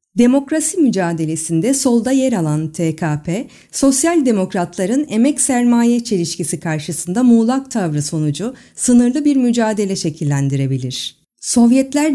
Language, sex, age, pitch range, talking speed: Turkish, female, 50-69, 165-260 Hz, 100 wpm